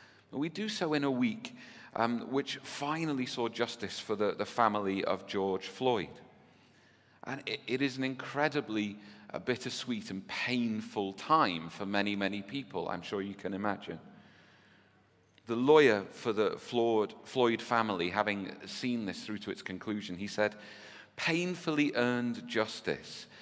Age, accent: 40-59, British